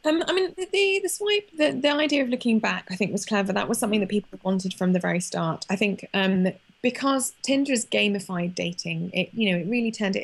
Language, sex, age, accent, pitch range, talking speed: English, female, 20-39, British, 185-225 Hz, 235 wpm